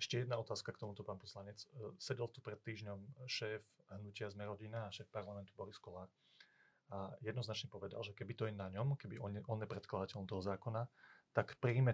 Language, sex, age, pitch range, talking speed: Slovak, male, 30-49, 105-125 Hz, 180 wpm